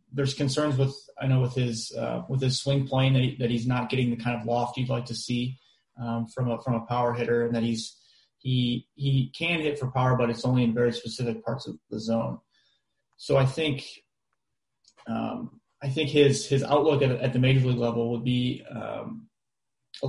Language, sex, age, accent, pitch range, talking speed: English, male, 30-49, American, 120-135 Hz, 210 wpm